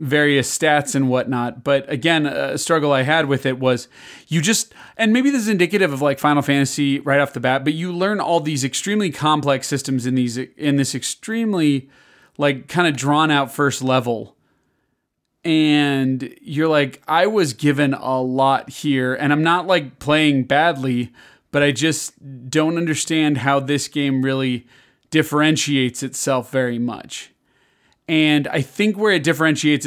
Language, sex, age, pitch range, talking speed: English, male, 30-49, 130-155 Hz, 165 wpm